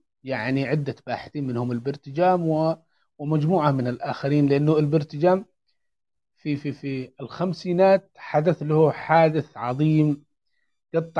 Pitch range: 145-170 Hz